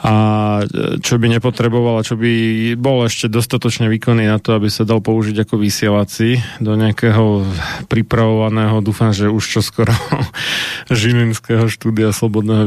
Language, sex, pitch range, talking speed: Slovak, male, 105-115 Hz, 135 wpm